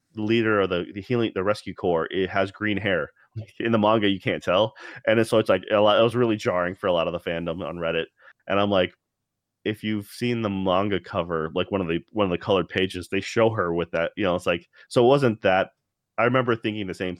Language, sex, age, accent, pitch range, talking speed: English, male, 30-49, American, 95-115 Hz, 250 wpm